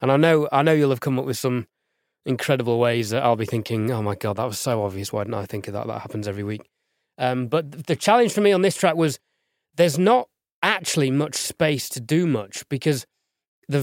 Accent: British